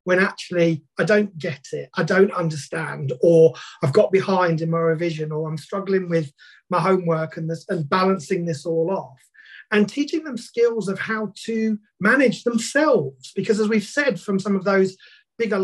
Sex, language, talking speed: male, English, 175 wpm